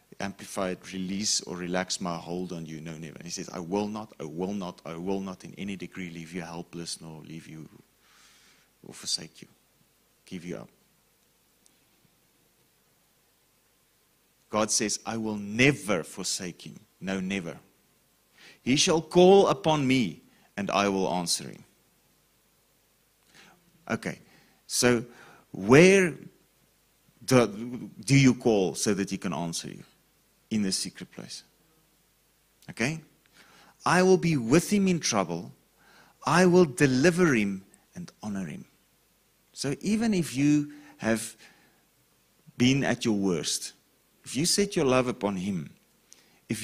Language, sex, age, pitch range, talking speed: English, male, 30-49, 90-140 Hz, 135 wpm